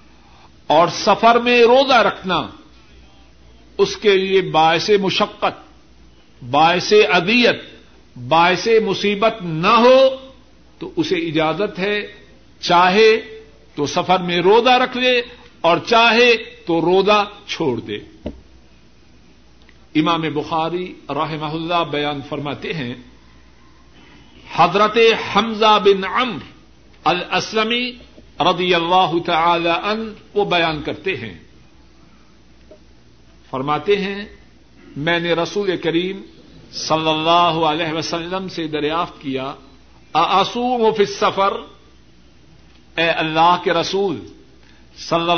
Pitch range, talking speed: 155-210 Hz, 100 wpm